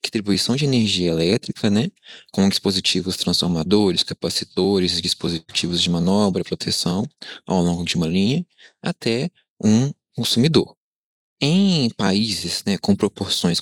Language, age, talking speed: Portuguese, 20-39, 115 wpm